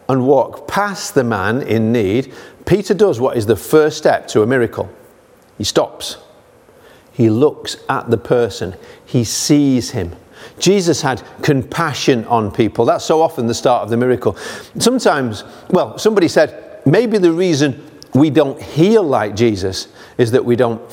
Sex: male